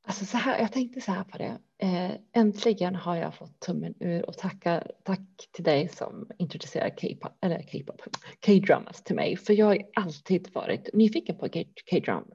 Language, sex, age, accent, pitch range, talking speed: Swedish, female, 30-49, native, 180-220 Hz, 175 wpm